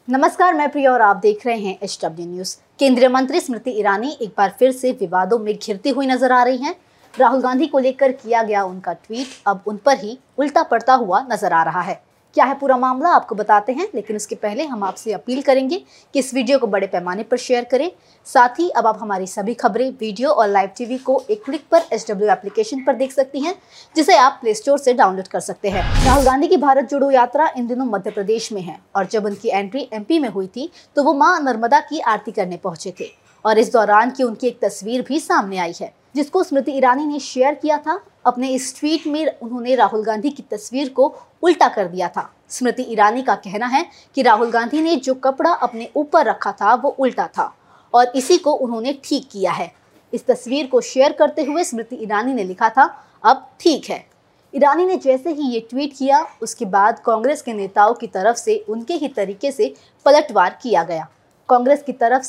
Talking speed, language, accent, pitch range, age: 215 wpm, Hindi, native, 215-280 Hz, 20-39